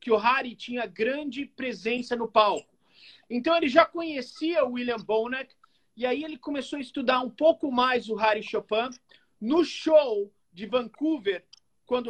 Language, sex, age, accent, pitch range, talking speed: Portuguese, male, 50-69, Brazilian, 225-270 Hz, 160 wpm